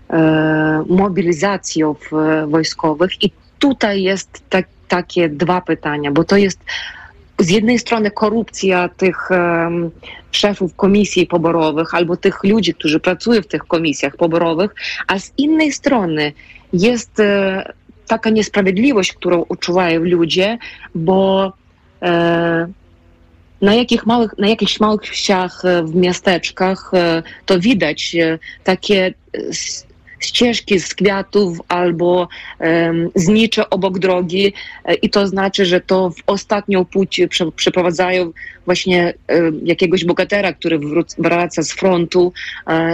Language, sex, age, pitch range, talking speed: Polish, female, 30-49, 170-195 Hz, 120 wpm